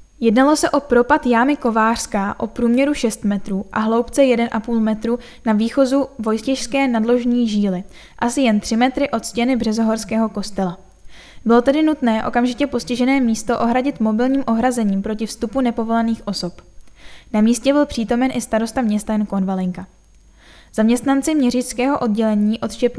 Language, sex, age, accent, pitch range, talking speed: Czech, female, 10-29, native, 220-250 Hz, 140 wpm